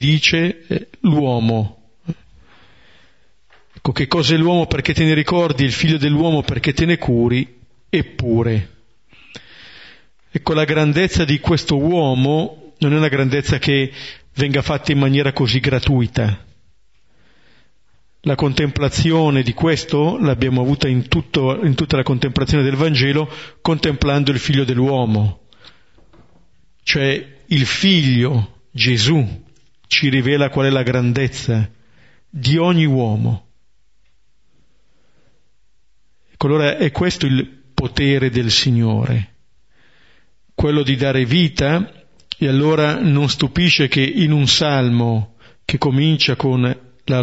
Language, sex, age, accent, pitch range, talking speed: Italian, male, 40-59, native, 125-150 Hz, 115 wpm